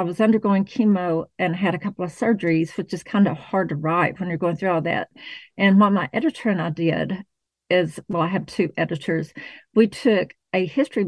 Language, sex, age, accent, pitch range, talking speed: English, female, 50-69, American, 175-210 Hz, 215 wpm